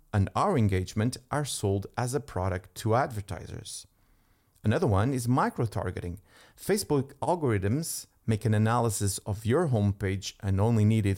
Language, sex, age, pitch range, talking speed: English, male, 40-59, 100-125 Hz, 135 wpm